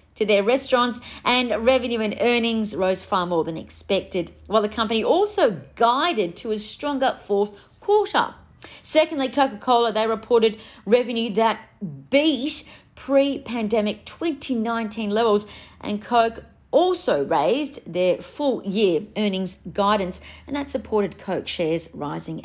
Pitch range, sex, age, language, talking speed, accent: 205-260 Hz, female, 40-59, English, 125 wpm, Australian